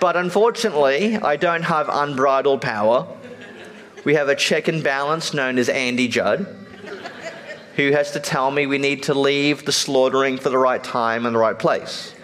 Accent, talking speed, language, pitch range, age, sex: Australian, 175 wpm, English, 130-185 Hz, 40-59, male